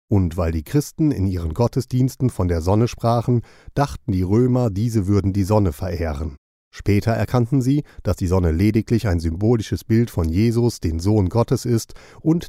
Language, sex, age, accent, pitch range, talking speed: German, male, 40-59, German, 90-115 Hz, 175 wpm